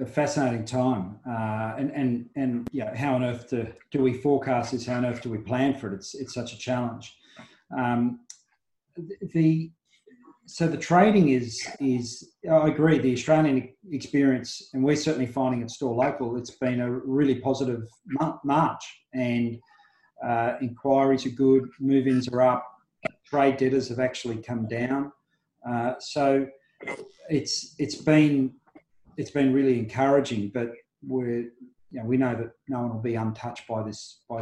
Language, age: English, 40-59